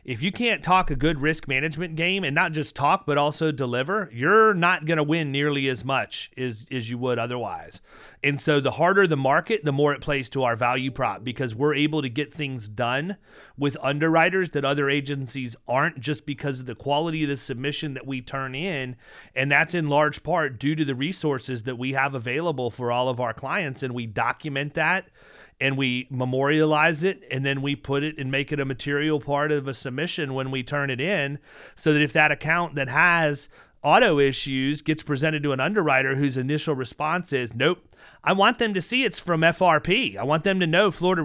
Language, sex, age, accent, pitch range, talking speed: English, male, 30-49, American, 135-165 Hz, 210 wpm